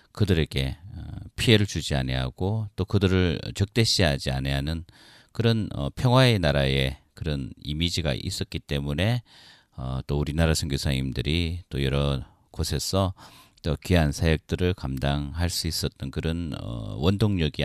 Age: 40-59